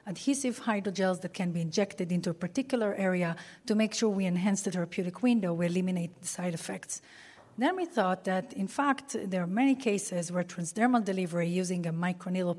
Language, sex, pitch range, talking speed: English, female, 180-205 Hz, 185 wpm